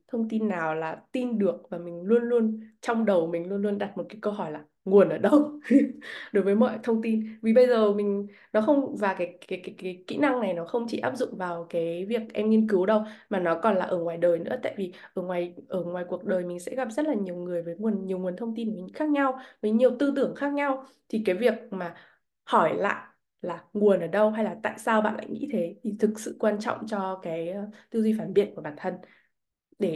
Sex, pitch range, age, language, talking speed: female, 180-230 Hz, 20-39, Vietnamese, 250 wpm